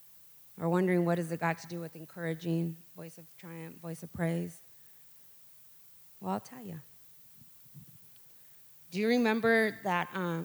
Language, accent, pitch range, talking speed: English, American, 160-205 Hz, 145 wpm